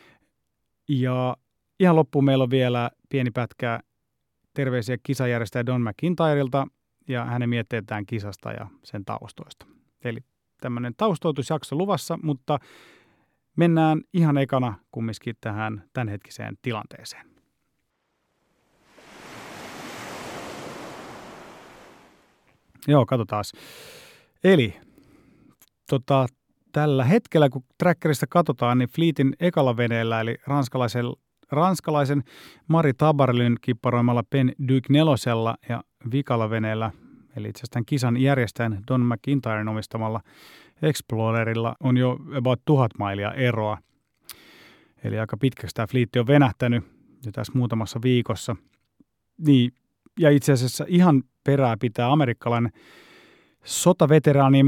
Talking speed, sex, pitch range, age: 100 wpm, male, 120-145 Hz, 30-49